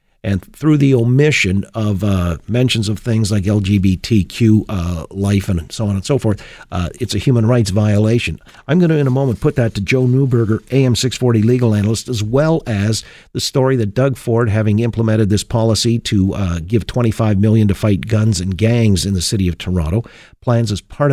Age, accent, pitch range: 50-69, American, 105-125 Hz